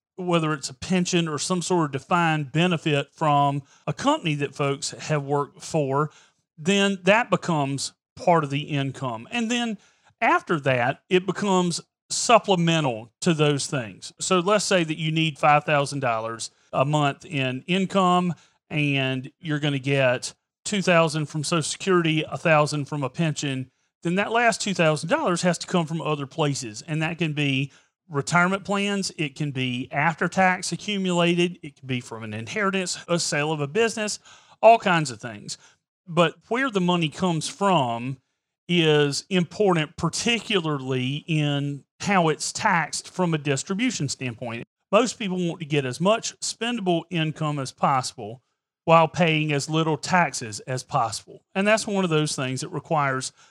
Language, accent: English, American